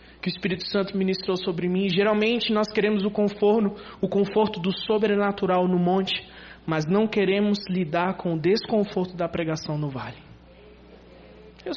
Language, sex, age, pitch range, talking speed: Portuguese, male, 20-39, 170-230 Hz, 155 wpm